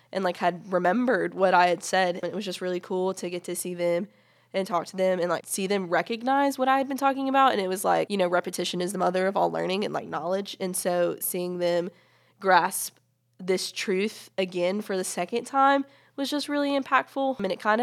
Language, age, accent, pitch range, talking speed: English, 20-39, American, 175-205 Hz, 240 wpm